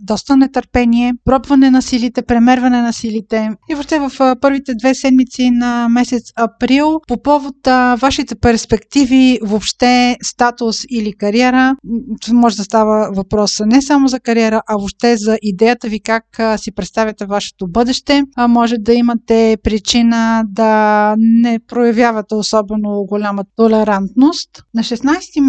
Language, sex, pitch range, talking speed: Bulgarian, female, 225-260 Hz, 130 wpm